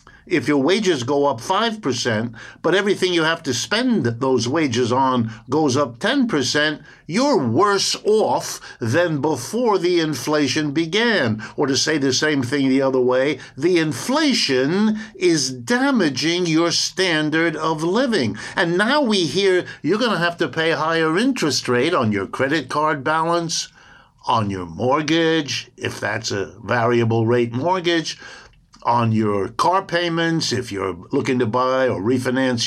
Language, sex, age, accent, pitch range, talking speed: English, male, 60-79, American, 130-180 Hz, 155 wpm